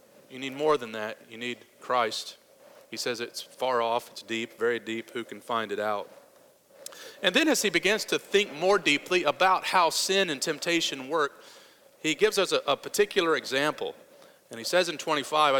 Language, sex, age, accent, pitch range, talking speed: English, male, 40-59, American, 135-190 Hz, 190 wpm